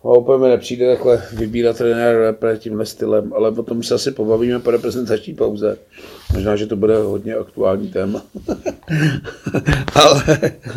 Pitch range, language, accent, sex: 110-120 Hz, Czech, native, male